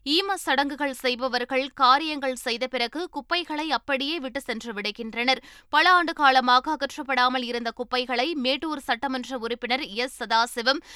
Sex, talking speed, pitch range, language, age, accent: female, 120 wpm, 245-295 Hz, Tamil, 20-39, native